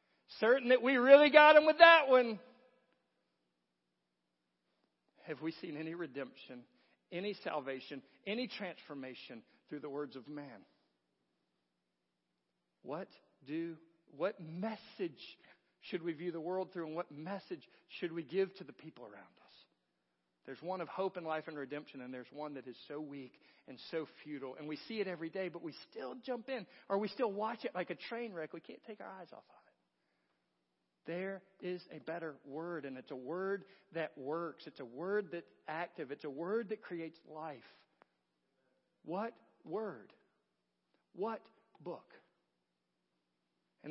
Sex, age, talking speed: male, 50-69, 160 wpm